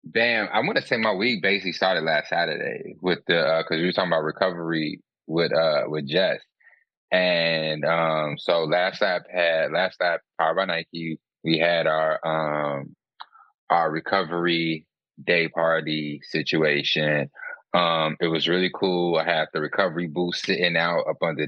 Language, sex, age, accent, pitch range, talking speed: English, male, 20-39, American, 80-90 Hz, 165 wpm